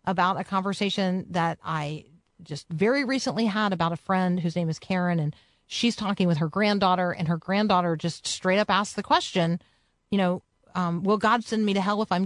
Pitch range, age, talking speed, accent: 170-210 Hz, 40-59, 205 wpm, American